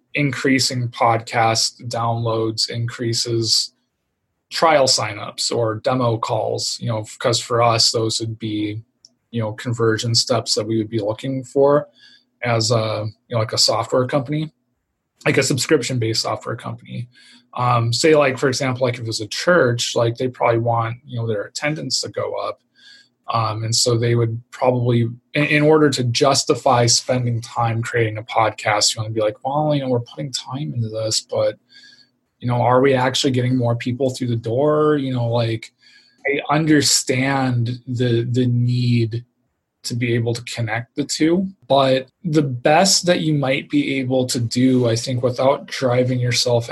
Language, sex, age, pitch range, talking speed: English, male, 20-39, 115-135 Hz, 170 wpm